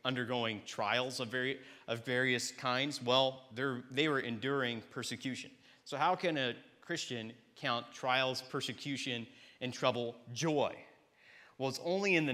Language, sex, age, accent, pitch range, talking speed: English, male, 30-49, American, 125-155 Hz, 125 wpm